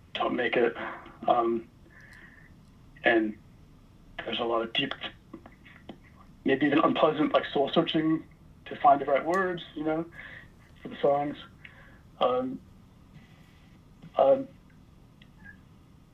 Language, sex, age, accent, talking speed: English, male, 60-79, American, 105 wpm